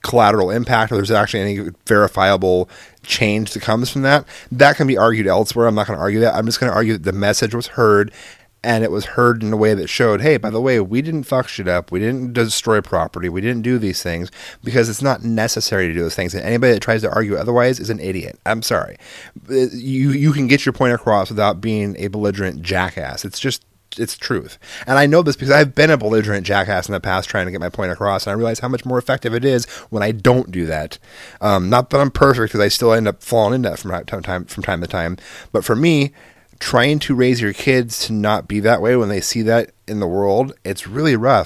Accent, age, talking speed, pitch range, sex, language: American, 30-49, 250 wpm, 100-125 Hz, male, English